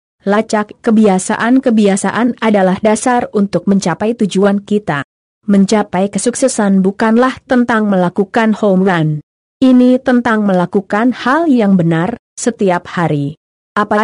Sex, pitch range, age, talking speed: female, 190-230 Hz, 20-39, 105 wpm